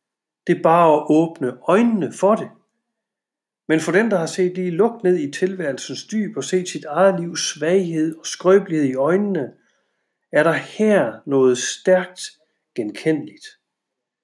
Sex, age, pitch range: male, 60-79, 145-200 Hz